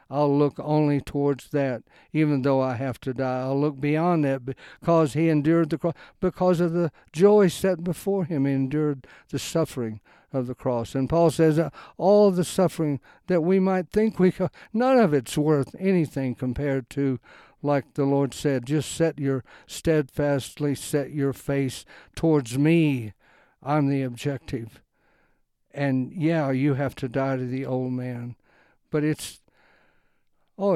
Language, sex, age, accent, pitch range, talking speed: English, male, 60-79, American, 135-185 Hz, 160 wpm